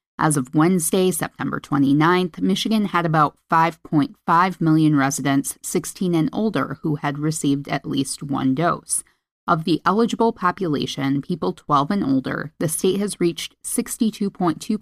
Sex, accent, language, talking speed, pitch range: female, American, English, 140 wpm, 150-200 Hz